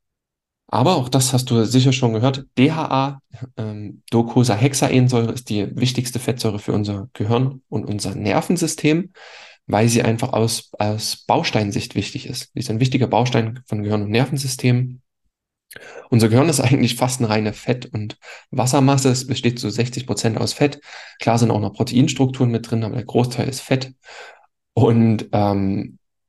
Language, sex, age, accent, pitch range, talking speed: German, male, 10-29, German, 110-130 Hz, 155 wpm